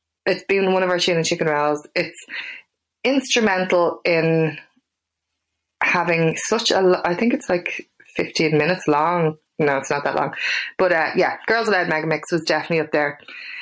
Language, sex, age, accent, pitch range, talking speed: English, female, 20-39, Irish, 155-185 Hz, 160 wpm